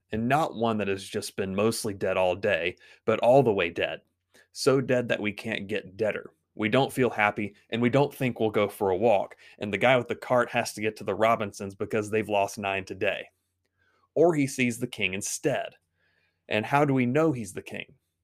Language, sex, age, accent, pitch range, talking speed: English, male, 30-49, American, 95-120 Hz, 220 wpm